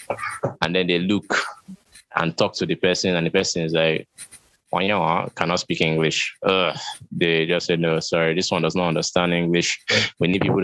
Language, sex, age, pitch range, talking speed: English, male, 20-39, 80-100 Hz, 185 wpm